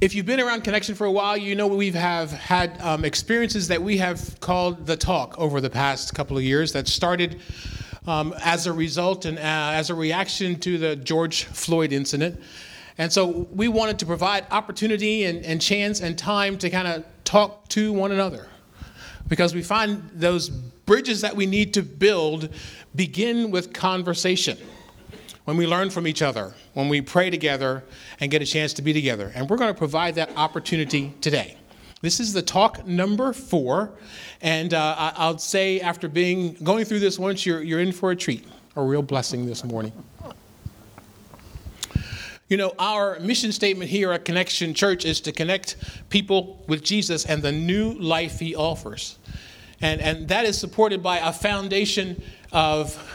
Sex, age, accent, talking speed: male, 30-49, American, 180 wpm